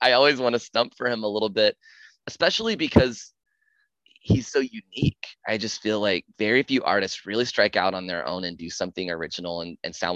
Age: 20-39